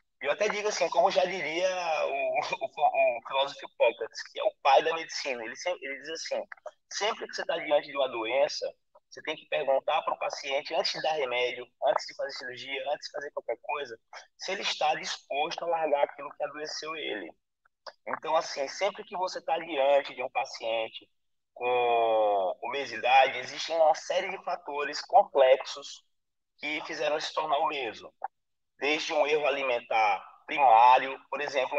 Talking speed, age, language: 175 wpm, 20-39, Portuguese